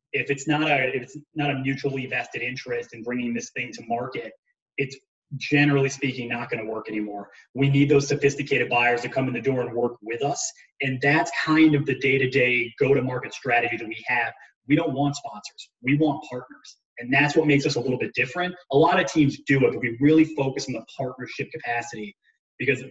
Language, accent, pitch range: English, American, 125-145 Hz